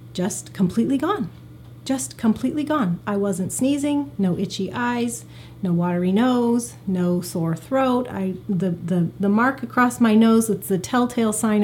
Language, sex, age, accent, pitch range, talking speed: English, female, 30-49, American, 185-225 Hz, 145 wpm